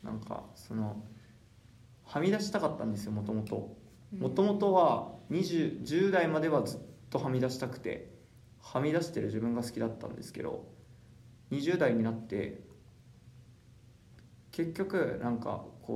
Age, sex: 20-39, male